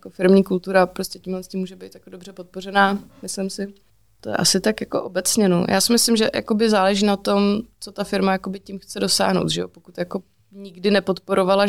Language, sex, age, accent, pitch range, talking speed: Czech, female, 20-39, native, 180-195 Hz, 195 wpm